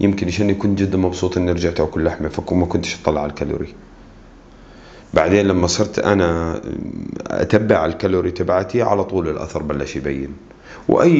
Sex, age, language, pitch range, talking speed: male, 30-49, Arabic, 85-110 Hz, 145 wpm